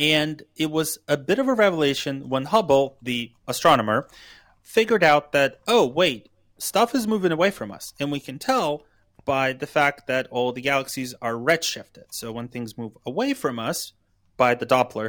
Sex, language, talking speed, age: male, English, 185 wpm, 30-49